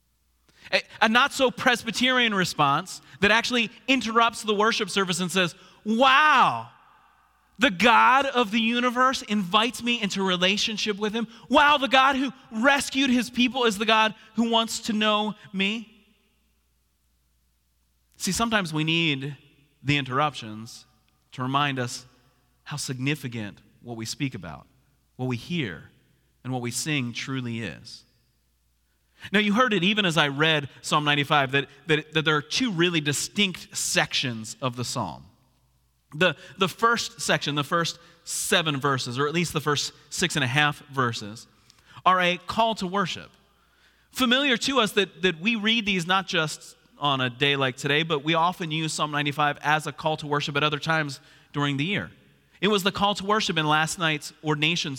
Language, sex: English, male